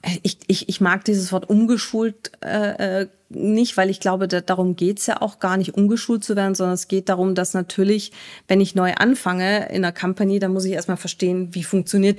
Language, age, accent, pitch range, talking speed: German, 30-49, German, 180-210 Hz, 210 wpm